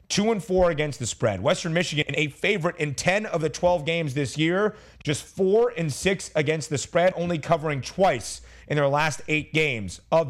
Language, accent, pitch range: English, American, 145-180 Hz